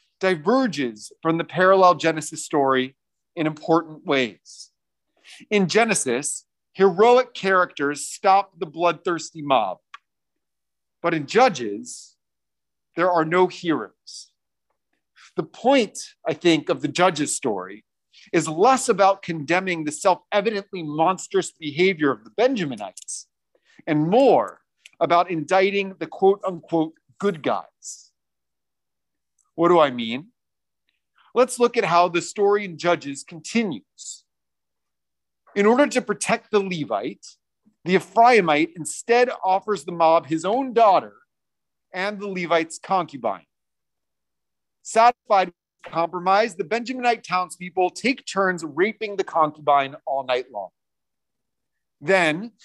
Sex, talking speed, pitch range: male, 115 wpm, 155-200 Hz